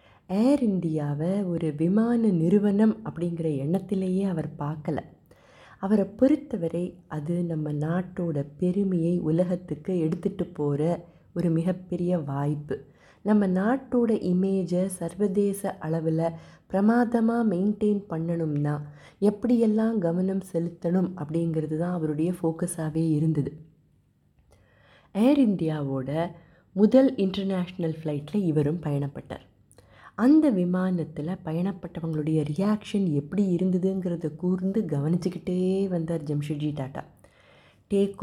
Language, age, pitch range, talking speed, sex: Tamil, 30-49, 155-195 Hz, 85 wpm, female